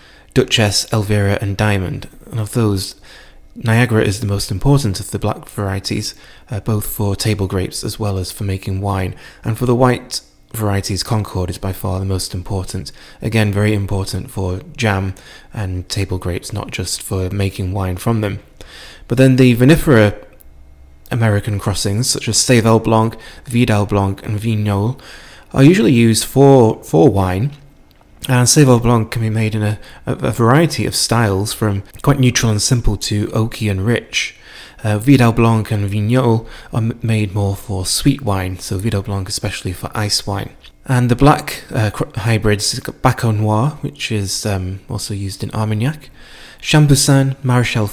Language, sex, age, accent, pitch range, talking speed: English, male, 20-39, British, 100-120 Hz, 160 wpm